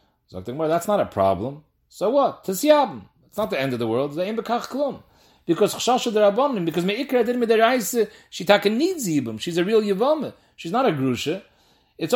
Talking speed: 145 wpm